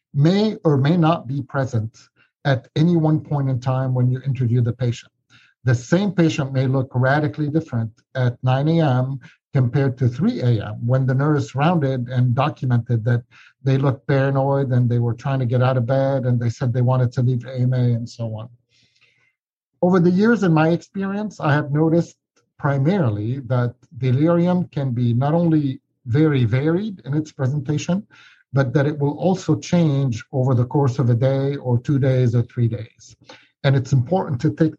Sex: male